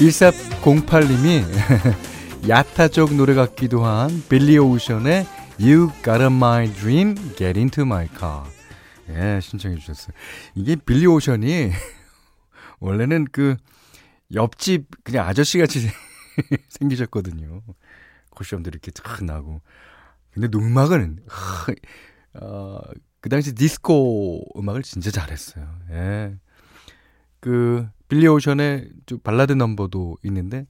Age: 40-59